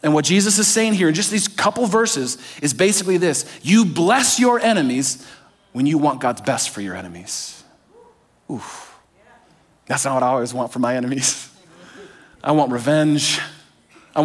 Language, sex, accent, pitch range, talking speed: English, male, American, 160-230 Hz, 165 wpm